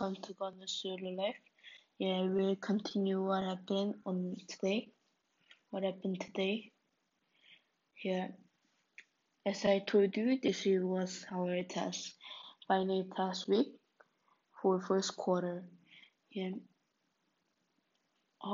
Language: English